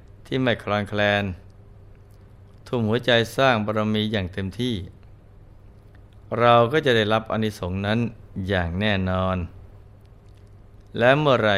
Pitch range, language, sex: 100-110 Hz, Thai, male